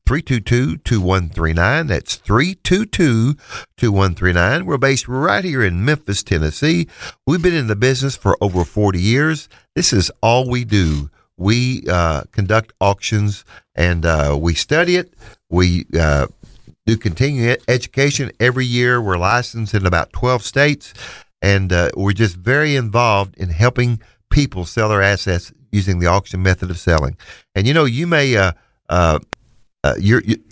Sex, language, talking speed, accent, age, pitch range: male, English, 145 wpm, American, 50-69, 95-125 Hz